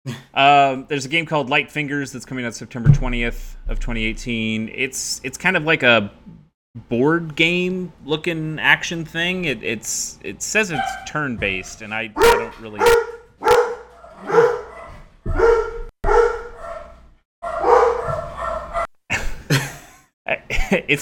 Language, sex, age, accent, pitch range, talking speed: English, male, 30-49, American, 100-145 Hz, 105 wpm